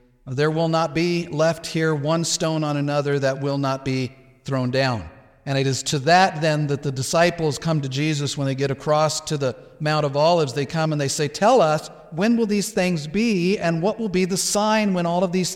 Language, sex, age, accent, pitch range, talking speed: English, male, 50-69, American, 145-175 Hz, 230 wpm